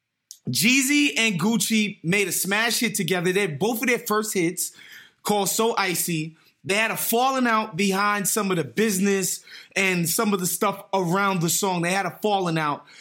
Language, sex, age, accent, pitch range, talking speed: English, male, 20-39, American, 190-245 Hz, 190 wpm